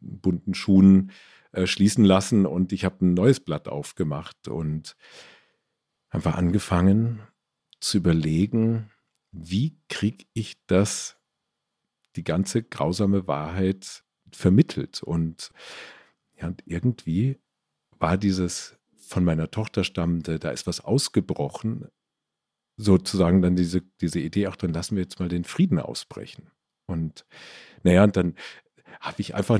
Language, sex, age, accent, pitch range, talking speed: German, male, 50-69, German, 85-110 Hz, 120 wpm